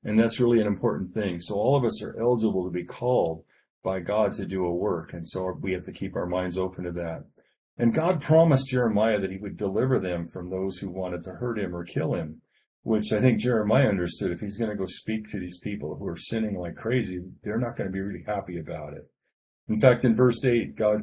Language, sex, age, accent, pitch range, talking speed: English, male, 40-59, American, 90-110 Hz, 245 wpm